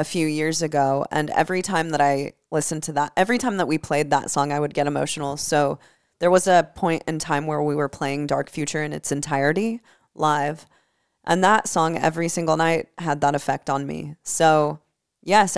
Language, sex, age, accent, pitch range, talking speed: English, female, 20-39, American, 145-170 Hz, 205 wpm